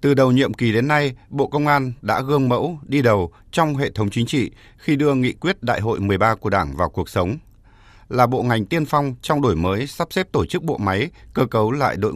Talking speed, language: 240 wpm, Vietnamese